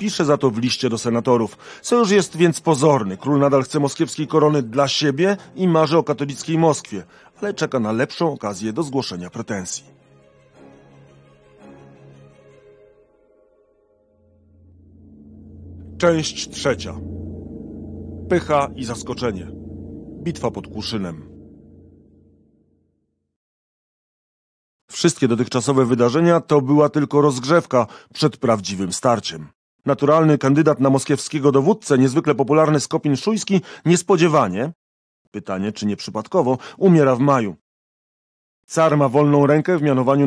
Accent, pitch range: native, 100-150 Hz